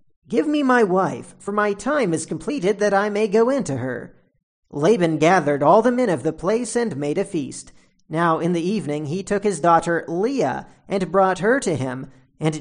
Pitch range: 155-220 Hz